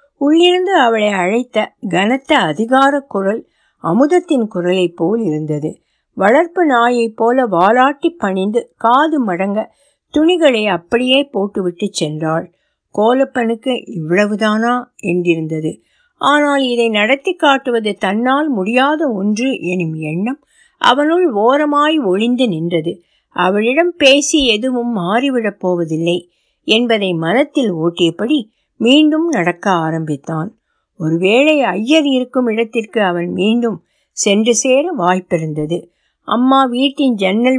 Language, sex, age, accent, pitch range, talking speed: Tamil, female, 60-79, native, 175-265 Hz, 95 wpm